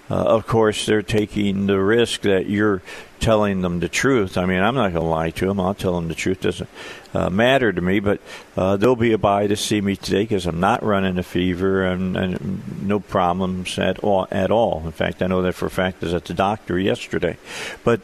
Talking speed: 260 wpm